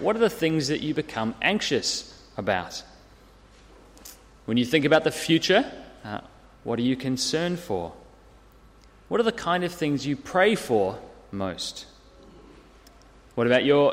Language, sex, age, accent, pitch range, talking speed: English, male, 30-49, Australian, 120-175 Hz, 145 wpm